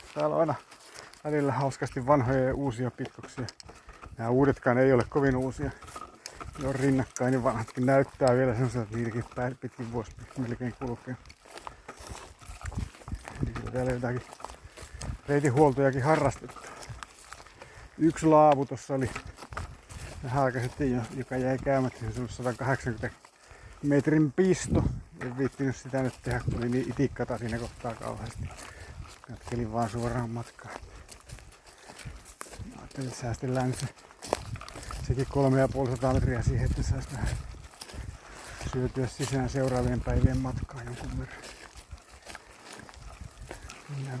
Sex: male